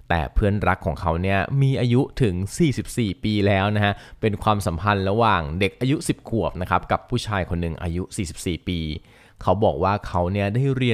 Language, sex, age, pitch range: Thai, male, 20-39, 90-115 Hz